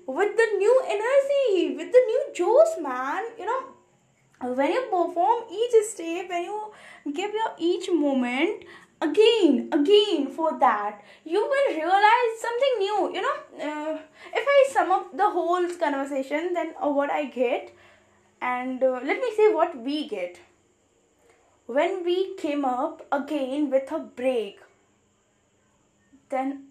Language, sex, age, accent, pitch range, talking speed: English, female, 10-29, Indian, 270-395 Hz, 140 wpm